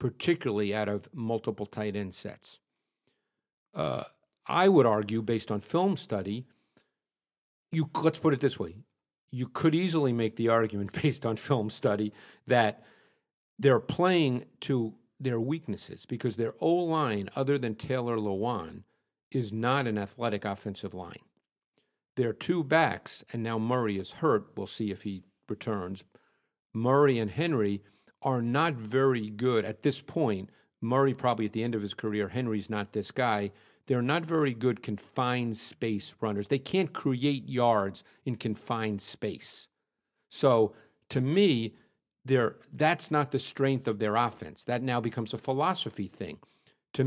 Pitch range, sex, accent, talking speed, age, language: 105-140 Hz, male, American, 150 wpm, 50-69, English